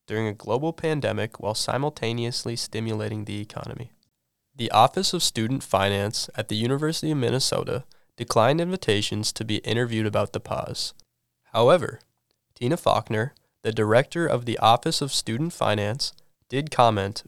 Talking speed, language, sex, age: 140 wpm, English, male, 20-39